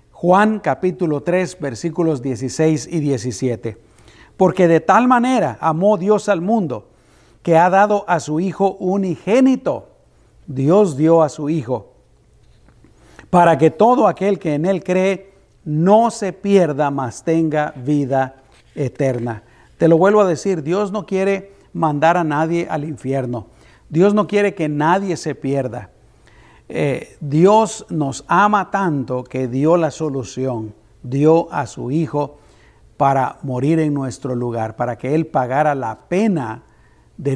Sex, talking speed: male, 140 wpm